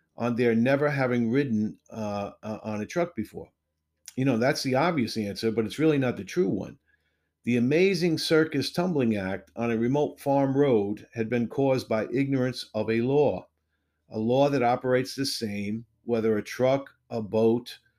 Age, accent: 50-69, American